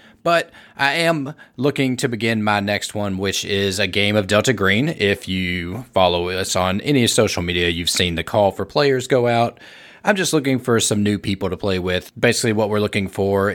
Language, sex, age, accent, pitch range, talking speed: English, male, 30-49, American, 95-120 Hz, 210 wpm